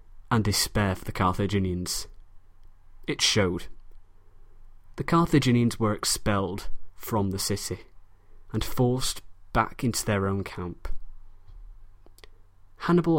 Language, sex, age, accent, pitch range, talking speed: English, male, 20-39, British, 90-115 Hz, 100 wpm